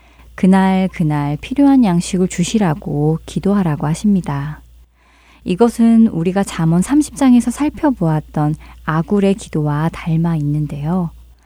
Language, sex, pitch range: Korean, female, 150-205 Hz